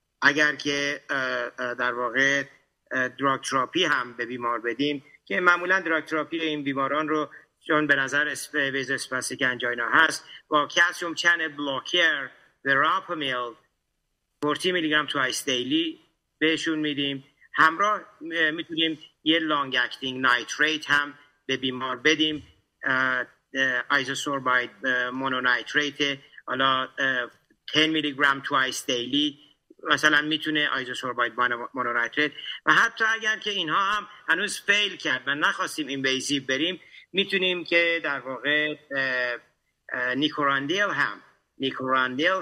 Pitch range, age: 130-165 Hz, 50-69